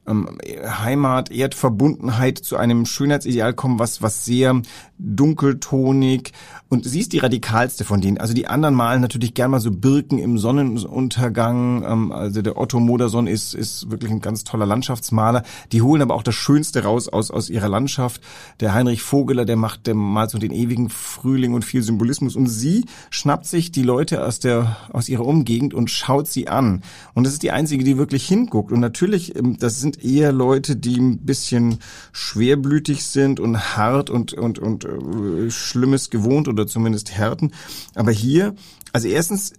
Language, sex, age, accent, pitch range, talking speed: German, male, 40-59, German, 115-140 Hz, 170 wpm